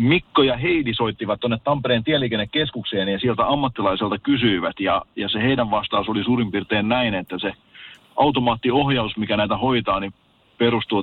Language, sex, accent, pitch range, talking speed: Finnish, male, native, 105-125 Hz, 150 wpm